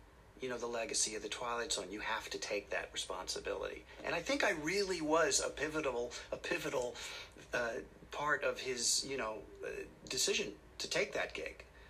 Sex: male